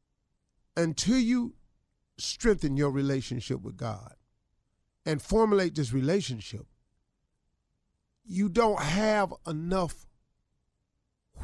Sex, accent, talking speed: male, American, 80 wpm